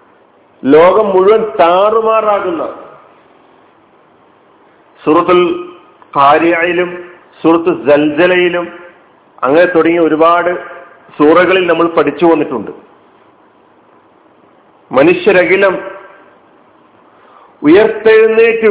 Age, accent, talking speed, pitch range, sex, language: 50-69, native, 50 wpm, 155-200 Hz, male, Malayalam